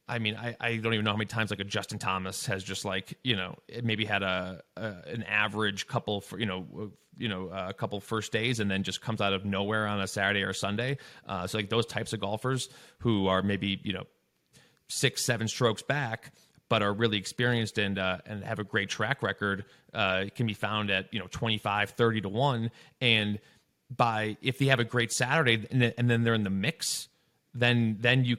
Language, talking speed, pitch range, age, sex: English, 225 wpm, 100-120 Hz, 30-49, male